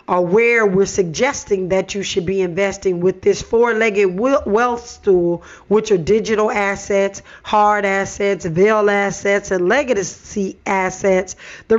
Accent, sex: American, female